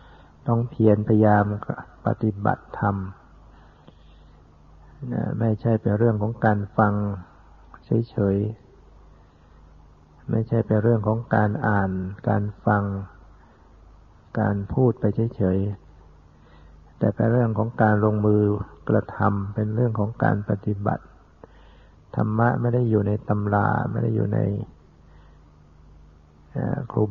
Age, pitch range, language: 60-79, 75-110 Hz, Thai